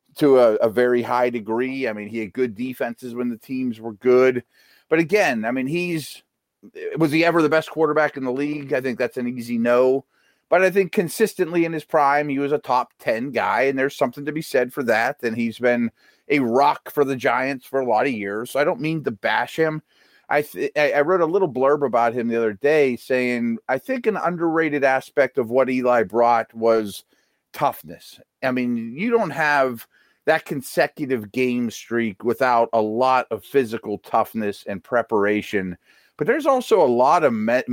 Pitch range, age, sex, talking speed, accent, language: 120-150 Hz, 30-49, male, 200 wpm, American, English